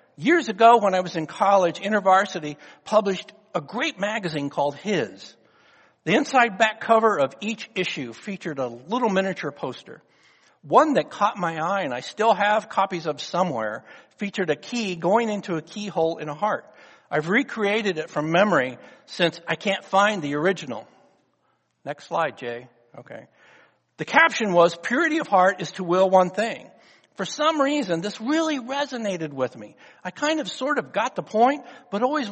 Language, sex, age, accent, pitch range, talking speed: English, male, 60-79, American, 180-265 Hz, 170 wpm